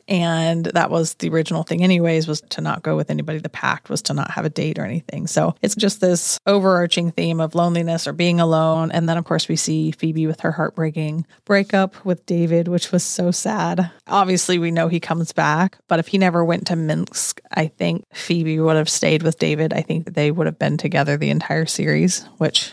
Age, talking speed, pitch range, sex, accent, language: 30-49, 220 wpm, 160-200 Hz, female, American, English